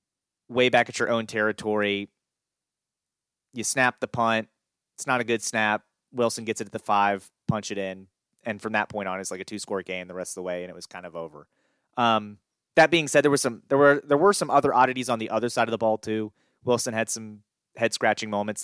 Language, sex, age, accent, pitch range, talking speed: English, male, 30-49, American, 100-120 Hz, 240 wpm